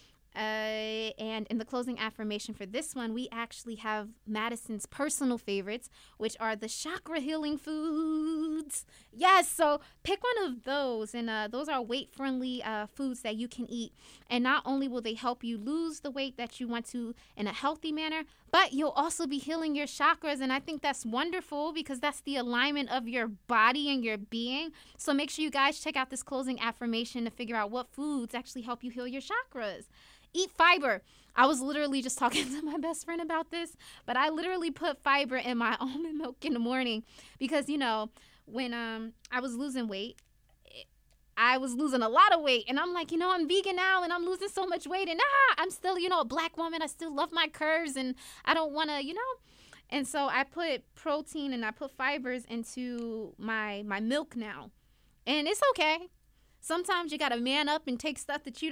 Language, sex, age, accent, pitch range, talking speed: English, female, 20-39, American, 240-315 Hz, 210 wpm